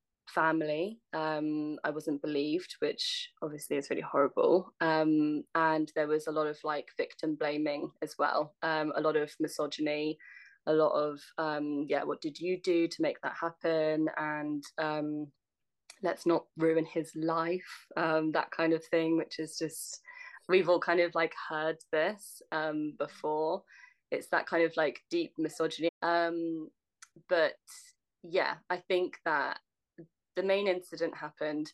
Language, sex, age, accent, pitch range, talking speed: English, female, 20-39, British, 155-185 Hz, 155 wpm